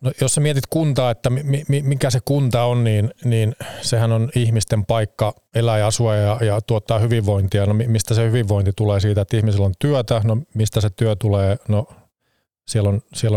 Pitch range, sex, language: 105-115 Hz, male, Finnish